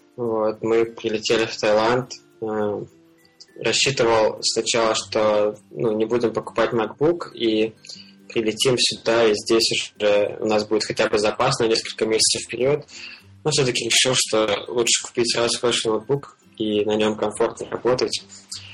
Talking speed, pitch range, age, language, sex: 140 wpm, 105-120 Hz, 20-39, Russian, male